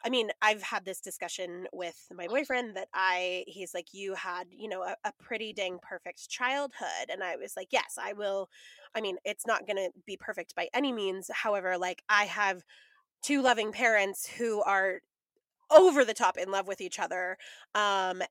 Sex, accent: female, American